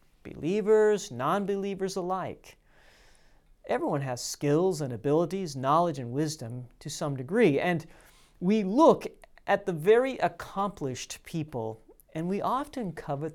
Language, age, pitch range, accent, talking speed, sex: English, 40-59, 130-200 Hz, American, 115 wpm, male